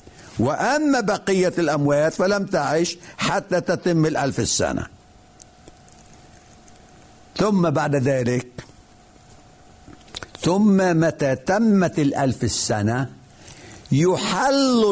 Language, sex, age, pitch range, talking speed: Arabic, male, 60-79, 135-195 Hz, 70 wpm